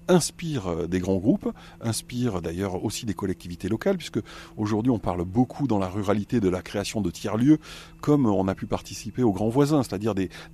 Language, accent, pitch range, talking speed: French, French, 100-140 Hz, 195 wpm